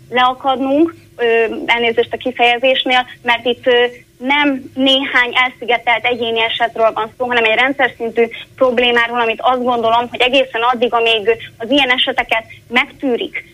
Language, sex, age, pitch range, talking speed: Hungarian, female, 30-49, 235-260 Hz, 130 wpm